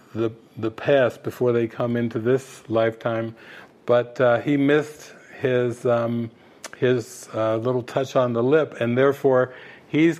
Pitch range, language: 120-145 Hz, English